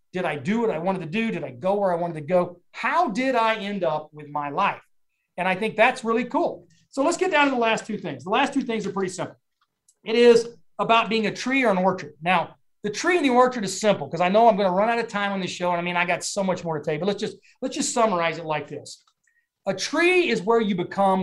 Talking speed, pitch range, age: 285 wpm, 170-220 Hz, 30-49